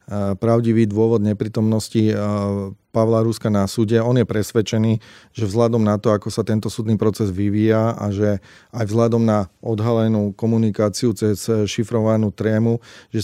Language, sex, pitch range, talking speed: Slovak, male, 105-115 Hz, 140 wpm